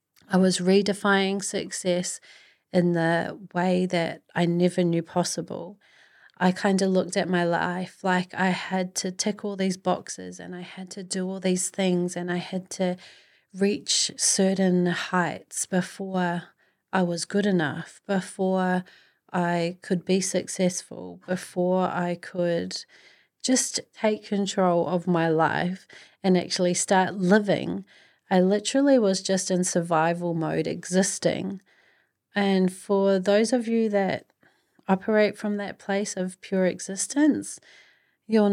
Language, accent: English, Australian